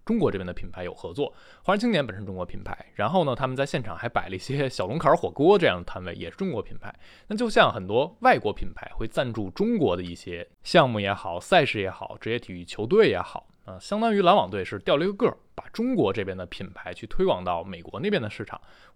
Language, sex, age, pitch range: Chinese, male, 20-39, 95-135 Hz